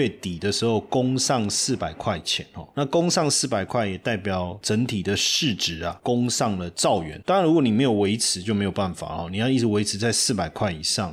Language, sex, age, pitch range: Chinese, male, 20-39, 95-120 Hz